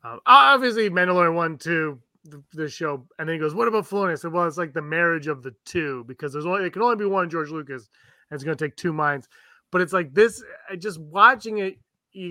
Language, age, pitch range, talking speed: English, 30-49, 145-195 Hz, 240 wpm